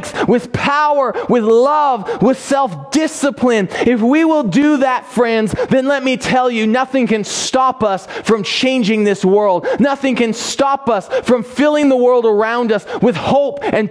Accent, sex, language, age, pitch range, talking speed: American, male, English, 30-49, 180-250 Hz, 165 wpm